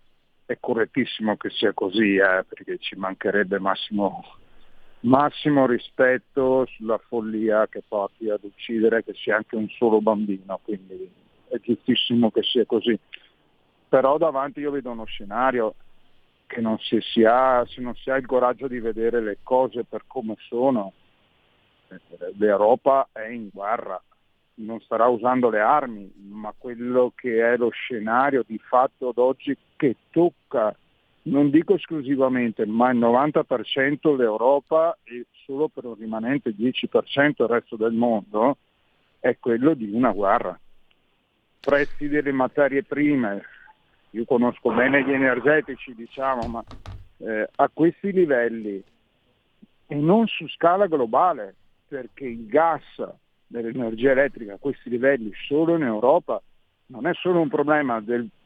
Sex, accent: male, native